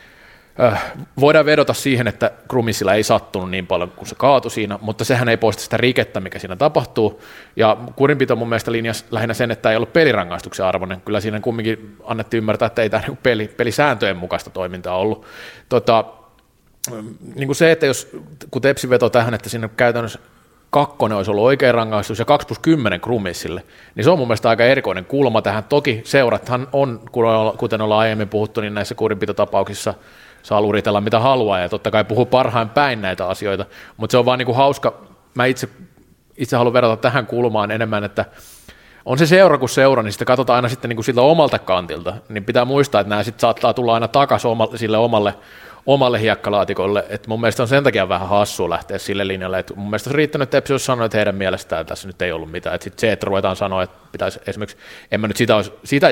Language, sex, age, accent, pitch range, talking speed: Finnish, male, 30-49, native, 105-130 Hz, 200 wpm